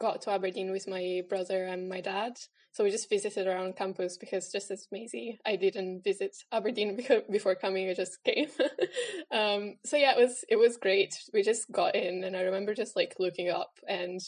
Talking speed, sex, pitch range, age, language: 200 wpm, female, 185-220 Hz, 10-29, English